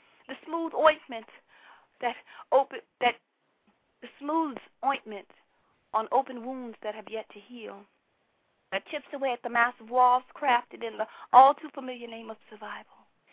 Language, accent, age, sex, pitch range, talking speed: English, American, 40-59, female, 220-270 Hz, 135 wpm